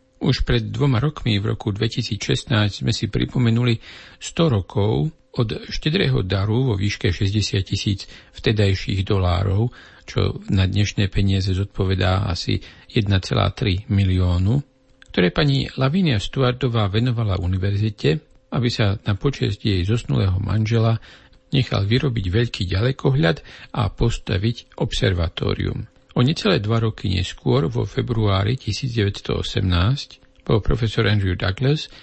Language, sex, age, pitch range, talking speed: Slovak, male, 50-69, 100-130 Hz, 115 wpm